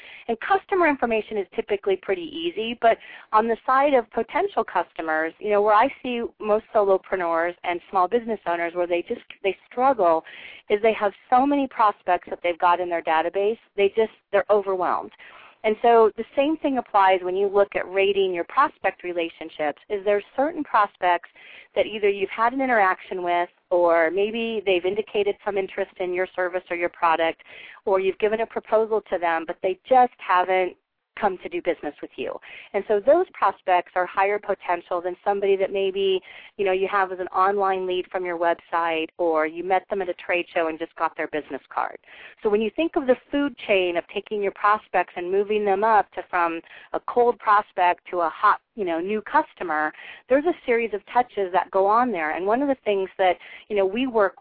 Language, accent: English, American